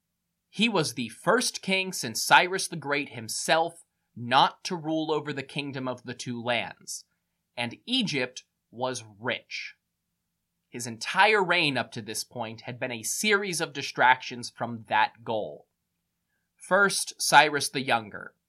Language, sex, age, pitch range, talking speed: English, male, 20-39, 120-170 Hz, 145 wpm